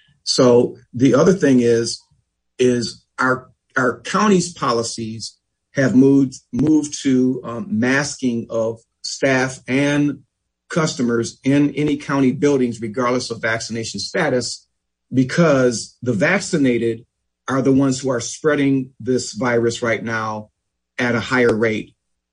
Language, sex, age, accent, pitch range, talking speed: English, male, 50-69, American, 120-145 Hz, 120 wpm